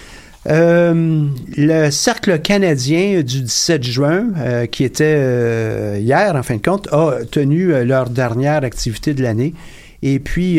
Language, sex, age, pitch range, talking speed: French, male, 50-69, 125-155 Hz, 145 wpm